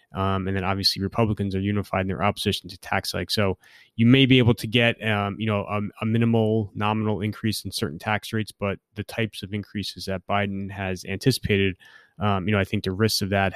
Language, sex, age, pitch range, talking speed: English, male, 20-39, 100-110 Hz, 220 wpm